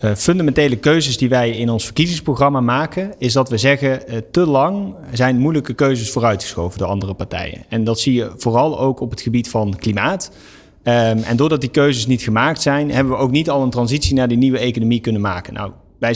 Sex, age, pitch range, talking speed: male, 30-49, 110-140 Hz, 210 wpm